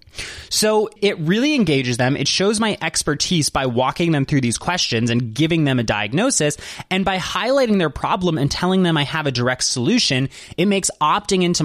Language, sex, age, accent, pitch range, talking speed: English, male, 20-39, American, 135-190 Hz, 190 wpm